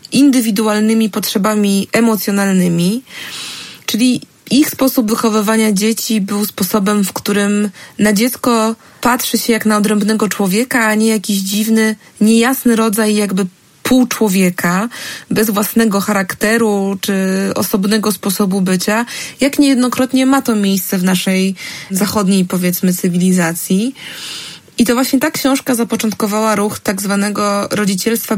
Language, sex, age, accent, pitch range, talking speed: Polish, female, 20-39, native, 195-230 Hz, 115 wpm